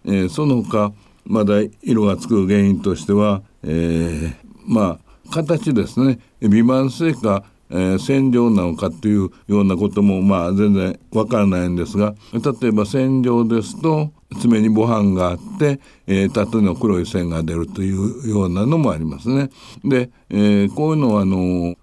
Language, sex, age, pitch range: Japanese, male, 60-79, 95-120 Hz